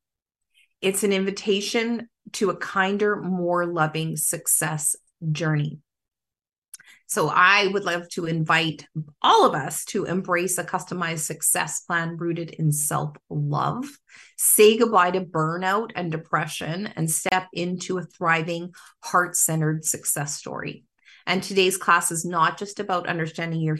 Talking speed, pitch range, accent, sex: 130 wpm, 155-185 Hz, American, female